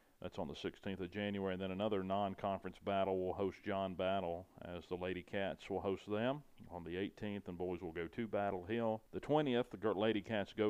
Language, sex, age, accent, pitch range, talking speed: English, male, 40-59, American, 90-110 Hz, 215 wpm